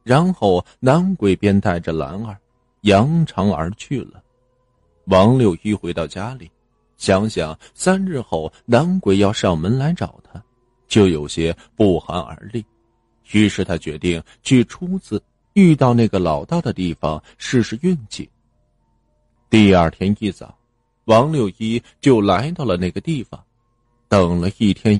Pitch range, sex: 90-135 Hz, male